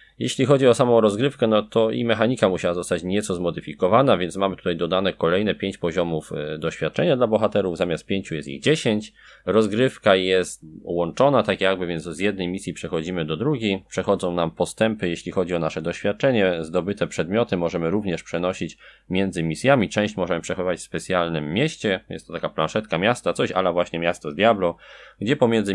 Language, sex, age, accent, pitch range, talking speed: Polish, male, 20-39, native, 85-105 Hz, 170 wpm